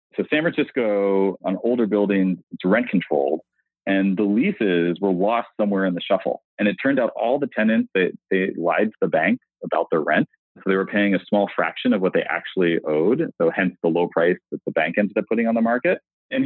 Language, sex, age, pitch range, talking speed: English, male, 30-49, 100-145 Hz, 220 wpm